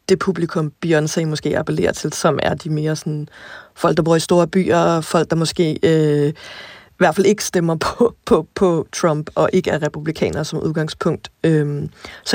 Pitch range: 155-180 Hz